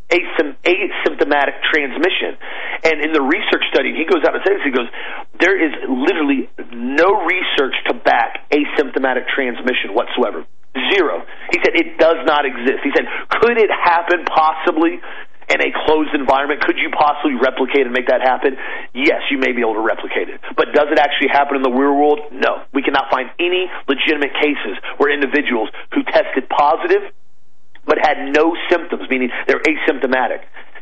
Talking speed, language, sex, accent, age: 165 wpm, English, male, American, 40-59